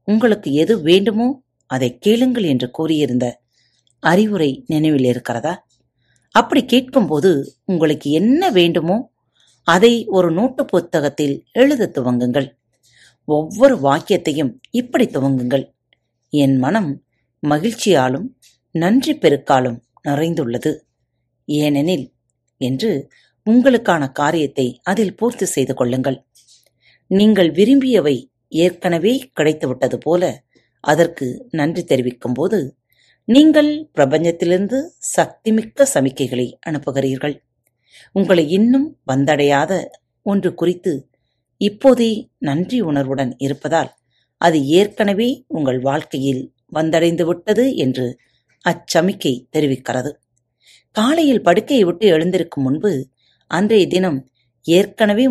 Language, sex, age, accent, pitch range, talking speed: Tamil, female, 30-49, native, 130-205 Hz, 85 wpm